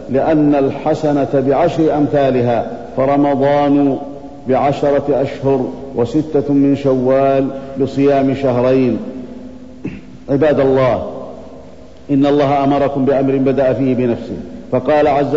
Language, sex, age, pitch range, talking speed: Arabic, male, 50-69, 135-150 Hz, 90 wpm